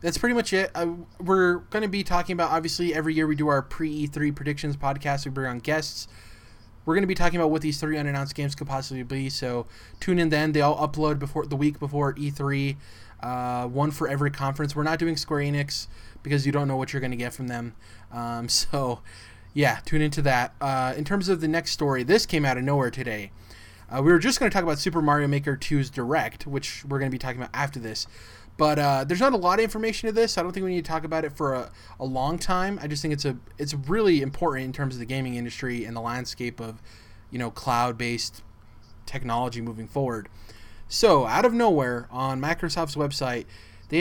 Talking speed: 230 wpm